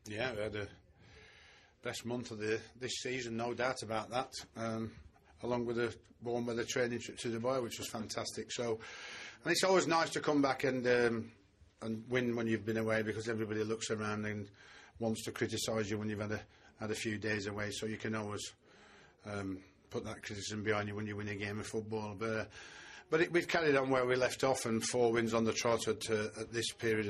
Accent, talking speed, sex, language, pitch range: British, 215 wpm, male, English, 105-120 Hz